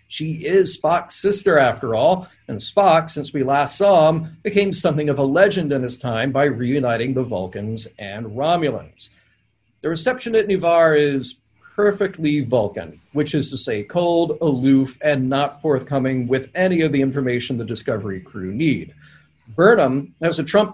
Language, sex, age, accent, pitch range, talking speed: English, male, 40-59, American, 135-175 Hz, 160 wpm